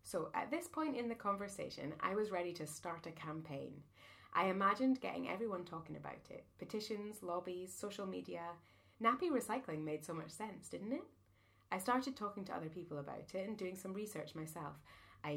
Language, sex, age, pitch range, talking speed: English, female, 30-49, 145-205 Hz, 185 wpm